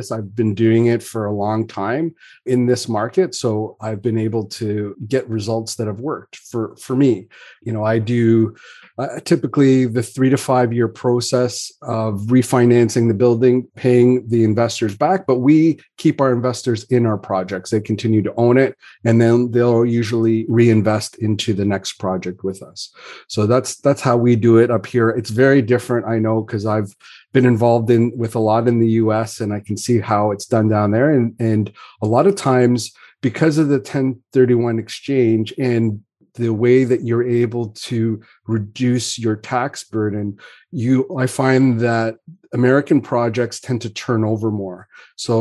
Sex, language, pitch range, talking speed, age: male, English, 110-125 Hz, 180 wpm, 30-49